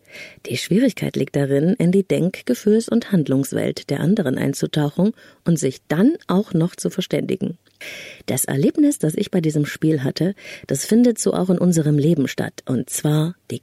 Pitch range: 140-195 Hz